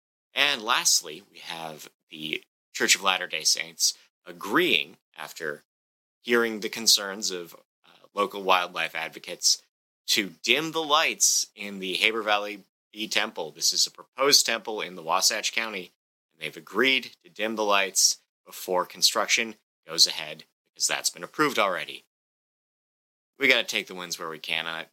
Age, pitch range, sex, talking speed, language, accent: 30-49, 80-105 Hz, male, 155 wpm, English, American